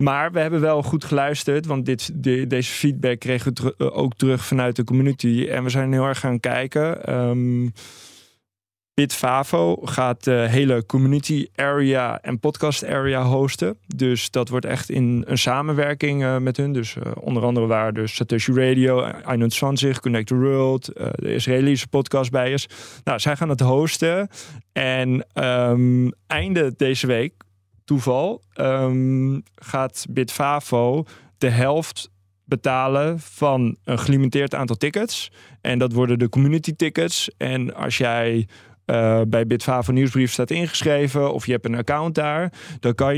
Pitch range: 120-140 Hz